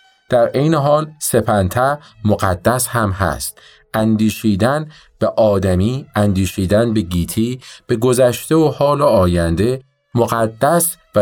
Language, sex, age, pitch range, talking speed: Arabic, male, 50-69, 85-125 Hz, 105 wpm